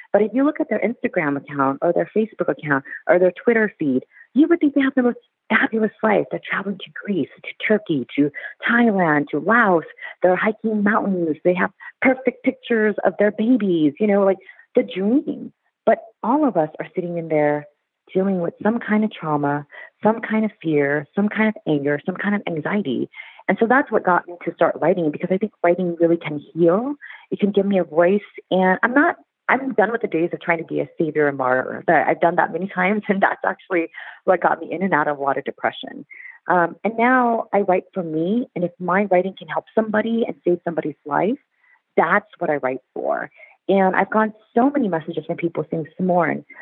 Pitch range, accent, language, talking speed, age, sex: 170-225 Hz, American, English, 215 wpm, 40-59, female